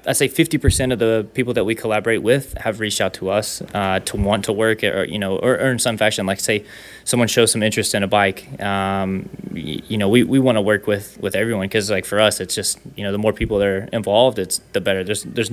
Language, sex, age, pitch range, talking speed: English, male, 20-39, 100-115 Hz, 260 wpm